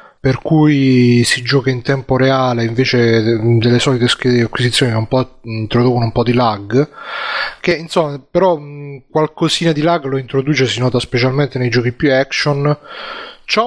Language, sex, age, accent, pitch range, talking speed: Italian, male, 30-49, native, 120-145 Hz, 150 wpm